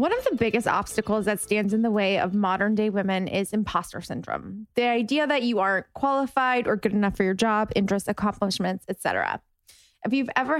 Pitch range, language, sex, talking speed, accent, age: 210-250 Hz, English, female, 205 wpm, American, 20-39